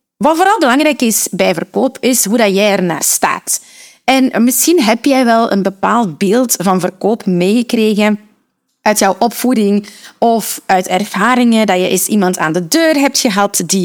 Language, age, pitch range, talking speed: Dutch, 30-49, 195-275 Hz, 165 wpm